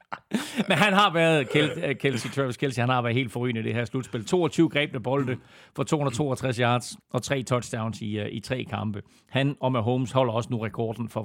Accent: native